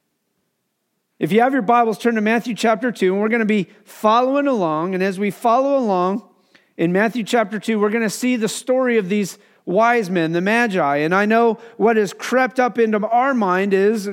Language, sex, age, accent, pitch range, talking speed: English, male, 40-59, American, 180-230 Hz, 210 wpm